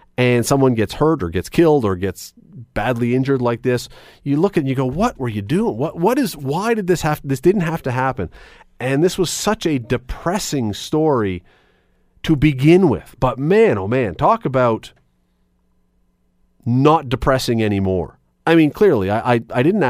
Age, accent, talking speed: 40-59, American, 180 wpm